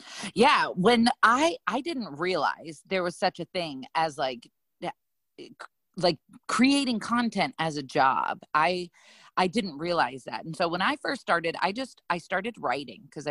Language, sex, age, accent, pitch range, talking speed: English, female, 30-49, American, 140-185 Hz, 160 wpm